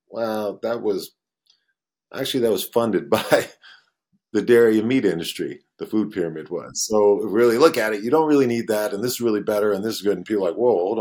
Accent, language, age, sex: American, English, 40-59, male